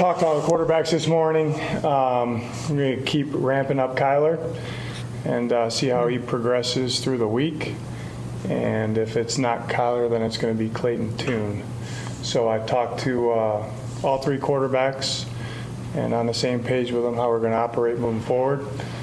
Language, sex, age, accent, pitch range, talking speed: English, male, 20-39, American, 115-135 Hz, 185 wpm